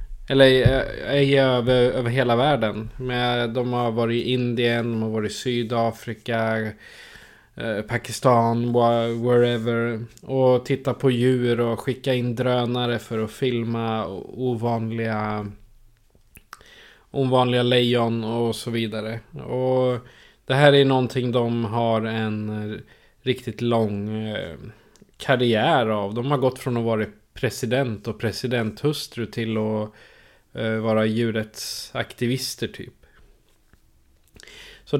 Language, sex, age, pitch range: Swedish, male, 20-39, 115-130 Hz